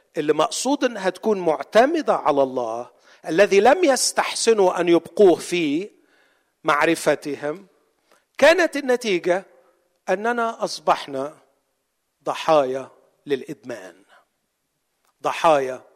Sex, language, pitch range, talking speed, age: male, Arabic, 160-255 Hz, 75 wpm, 50-69